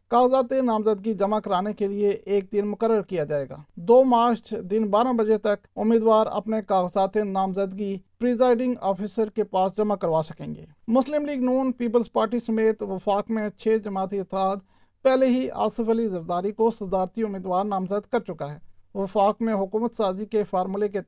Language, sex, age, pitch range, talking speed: Urdu, male, 50-69, 180-225 Hz, 170 wpm